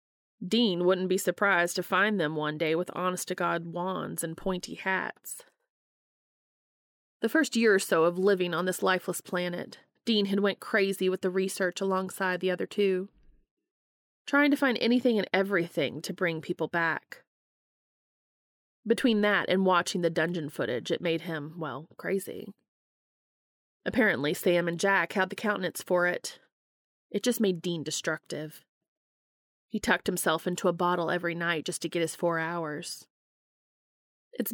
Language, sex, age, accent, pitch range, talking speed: English, female, 30-49, American, 170-195 Hz, 155 wpm